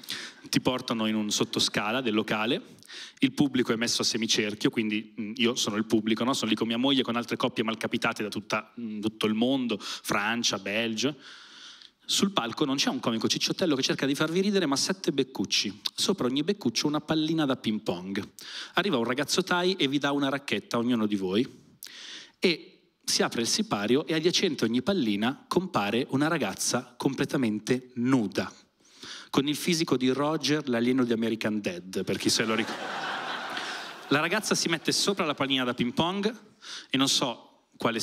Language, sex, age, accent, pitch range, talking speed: Italian, male, 30-49, native, 115-165 Hz, 175 wpm